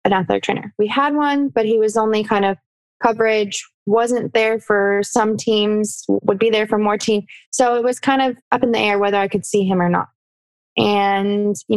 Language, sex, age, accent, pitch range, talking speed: English, female, 20-39, American, 200-235 Hz, 215 wpm